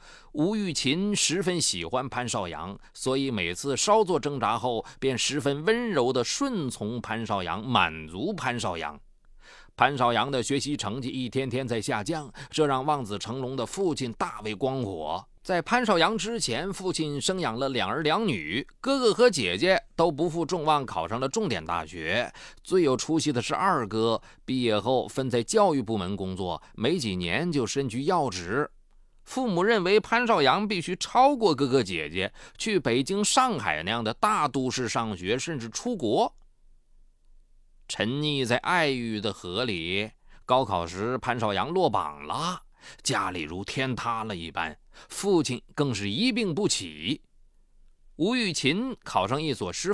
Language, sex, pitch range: Chinese, male, 115-175 Hz